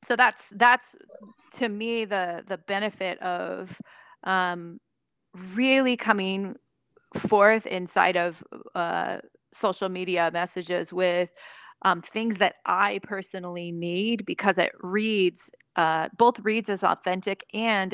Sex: female